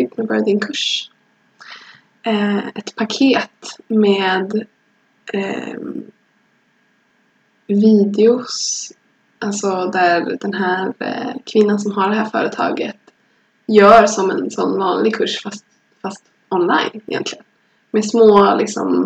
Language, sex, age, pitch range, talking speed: Swedish, female, 20-39, 195-230 Hz, 105 wpm